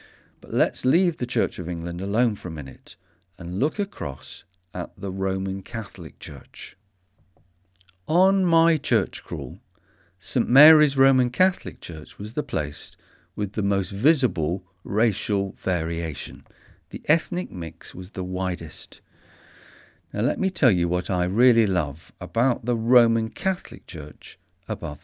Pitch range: 90-125 Hz